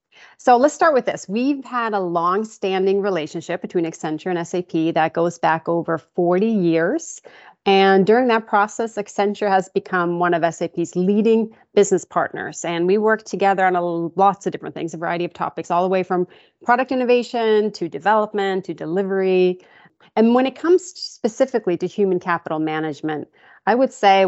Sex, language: female, English